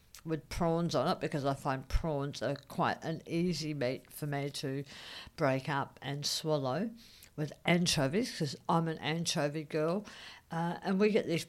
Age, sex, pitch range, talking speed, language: 60-79, female, 140-180 Hz, 165 wpm, English